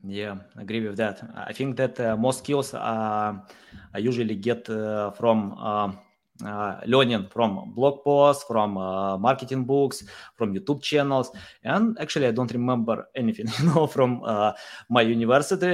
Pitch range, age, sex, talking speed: 115-150 Hz, 20-39, male, 155 wpm